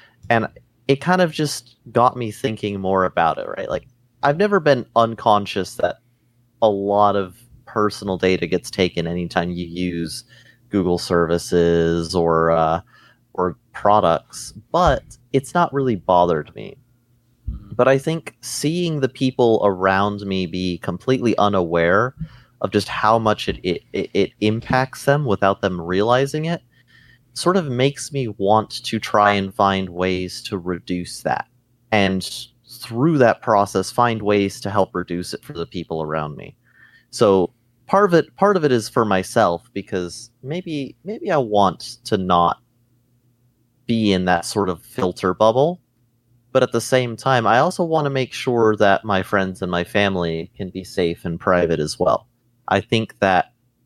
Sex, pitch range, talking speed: male, 95-125 Hz, 160 wpm